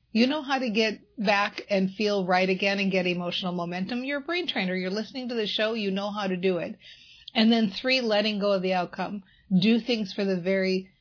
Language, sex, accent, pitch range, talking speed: English, female, American, 185-225 Hz, 230 wpm